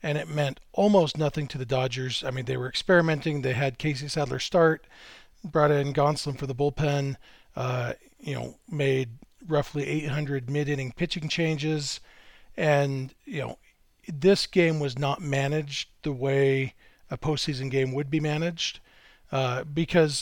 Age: 40-59